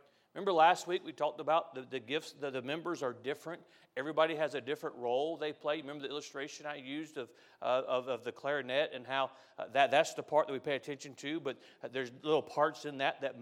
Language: English